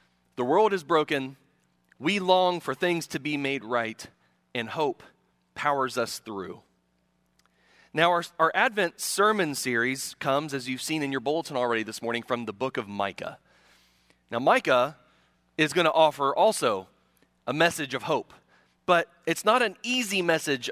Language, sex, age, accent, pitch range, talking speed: English, male, 30-49, American, 130-180 Hz, 160 wpm